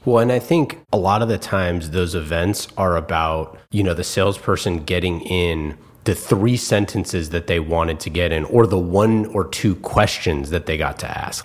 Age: 30-49